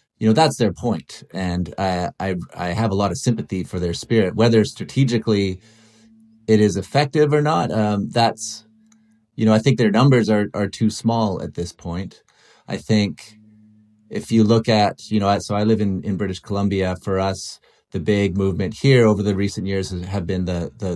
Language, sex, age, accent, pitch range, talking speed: English, male, 30-49, American, 95-115 Hz, 195 wpm